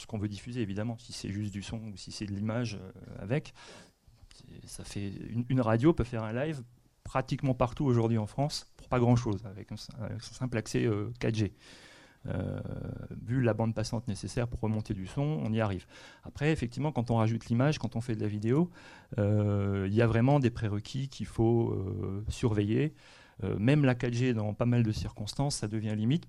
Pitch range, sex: 105-125 Hz, male